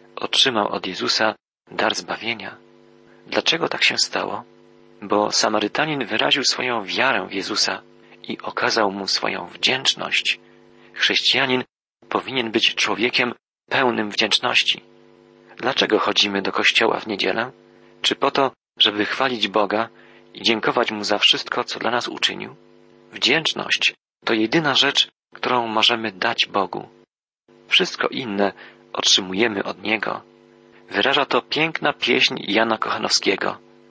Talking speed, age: 120 wpm, 40-59